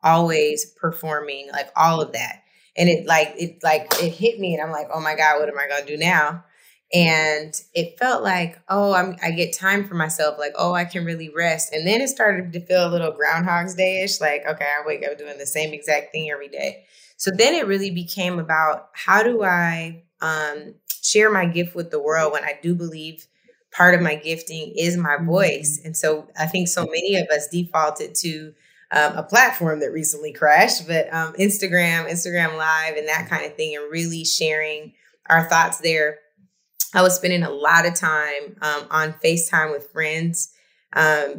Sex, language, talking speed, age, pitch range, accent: female, English, 200 wpm, 20-39, 150-180 Hz, American